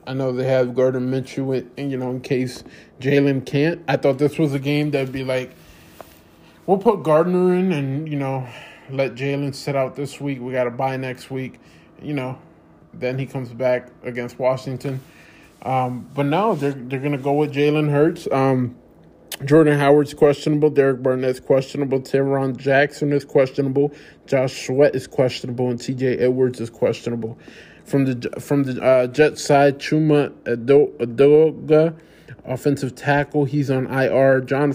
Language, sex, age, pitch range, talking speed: English, male, 20-39, 130-145 Hz, 160 wpm